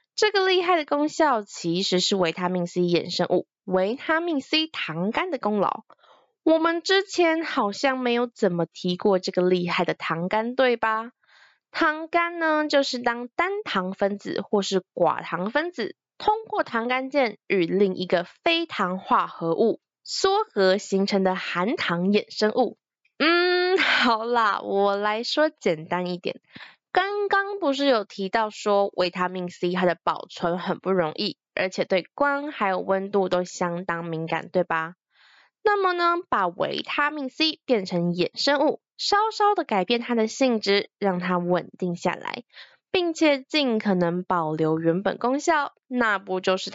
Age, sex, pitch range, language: 20-39, female, 185-290 Hz, Chinese